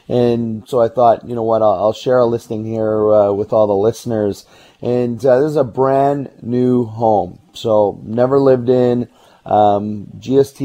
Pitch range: 110-130 Hz